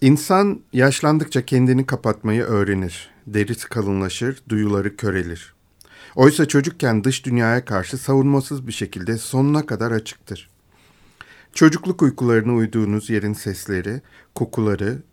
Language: Turkish